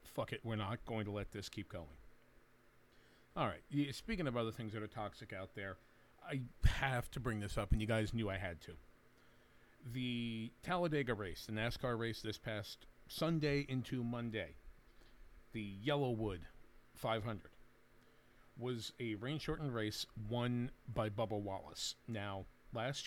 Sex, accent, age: male, American, 40-59